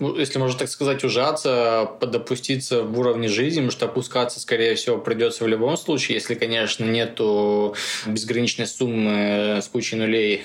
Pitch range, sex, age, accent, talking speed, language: 110-125 Hz, male, 20-39, native, 145 wpm, Russian